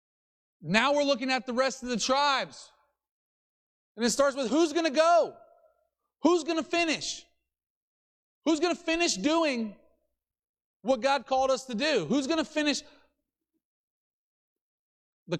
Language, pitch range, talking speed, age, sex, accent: English, 235-300 Hz, 145 wpm, 30-49, male, American